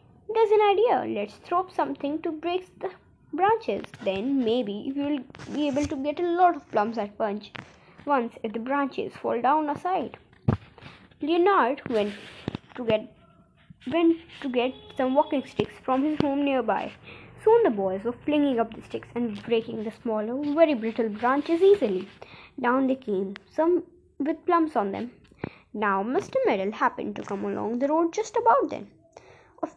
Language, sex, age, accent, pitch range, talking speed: Hindi, female, 20-39, native, 215-335 Hz, 165 wpm